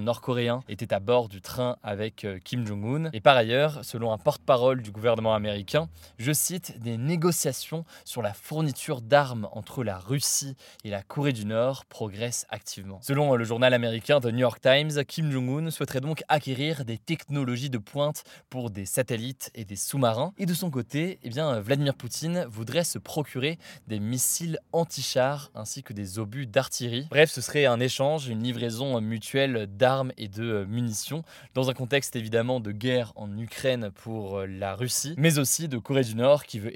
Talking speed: 180 wpm